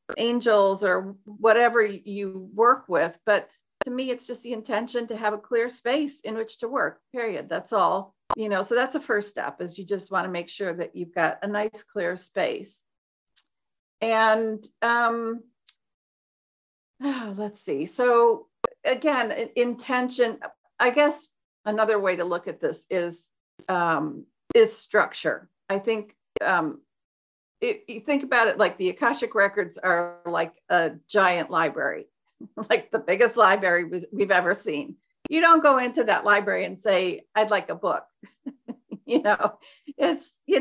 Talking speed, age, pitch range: 155 wpm, 50-69, 185-235 Hz